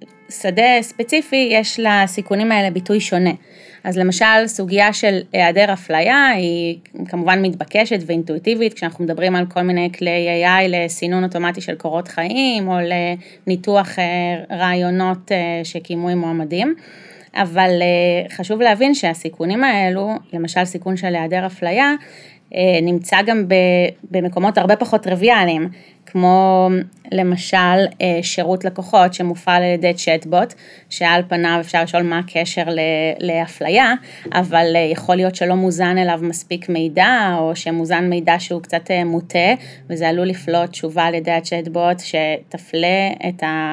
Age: 30-49